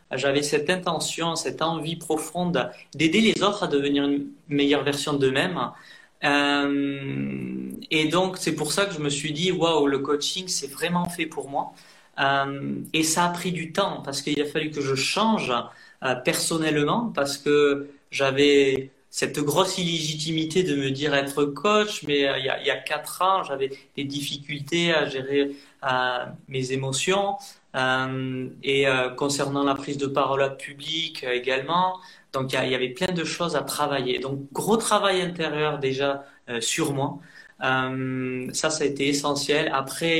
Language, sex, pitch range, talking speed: French, male, 140-165 Hz, 170 wpm